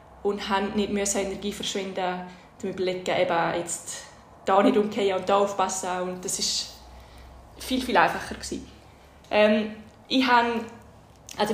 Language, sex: German, female